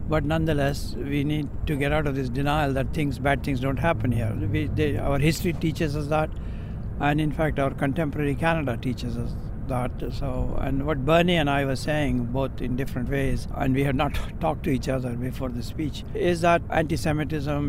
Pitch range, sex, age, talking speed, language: 125-150 Hz, male, 60-79, 200 wpm, English